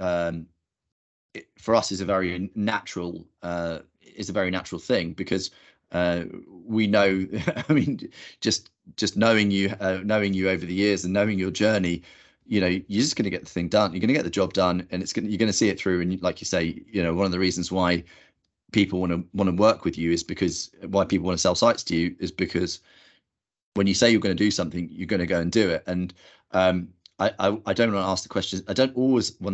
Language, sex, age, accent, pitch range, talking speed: English, male, 30-49, British, 90-105 Hz, 245 wpm